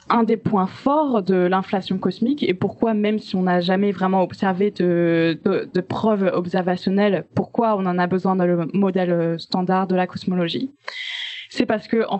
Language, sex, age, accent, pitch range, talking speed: French, female, 20-39, French, 180-235 Hz, 180 wpm